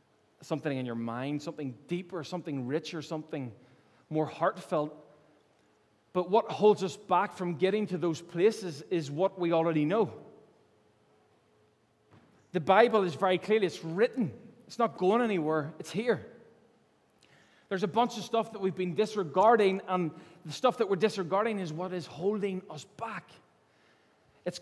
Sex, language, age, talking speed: male, English, 20-39, 150 wpm